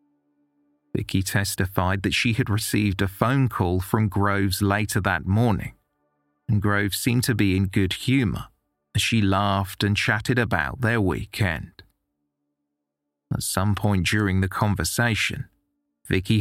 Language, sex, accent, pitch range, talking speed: English, male, British, 95-110 Hz, 135 wpm